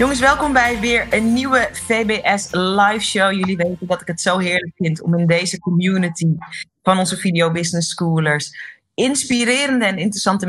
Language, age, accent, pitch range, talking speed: Dutch, 30-49, Dutch, 160-215 Hz, 165 wpm